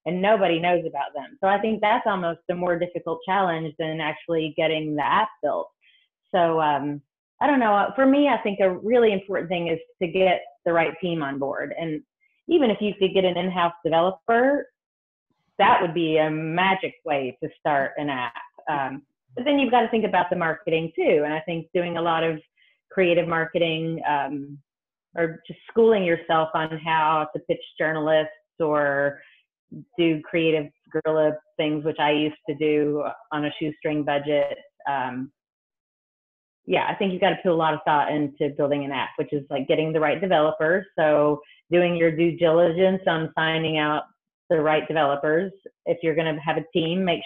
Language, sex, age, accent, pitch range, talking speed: English, female, 30-49, American, 155-185 Hz, 185 wpm